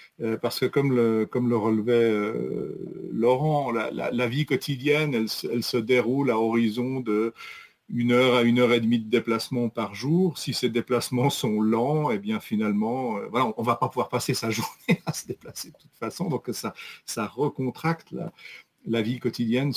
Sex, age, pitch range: male, 50-69, 120-145 Hz